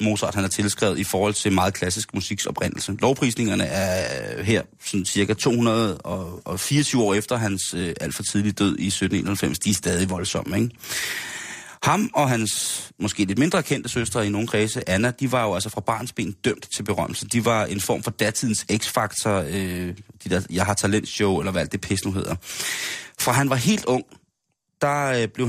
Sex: male